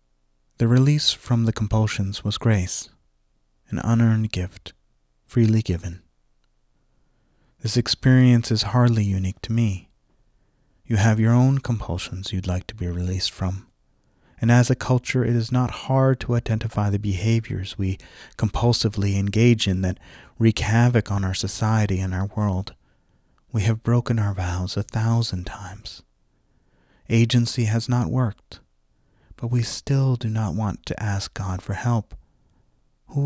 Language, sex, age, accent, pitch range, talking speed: English, male, 30-49, American, 95-115 Hz, 145 wpm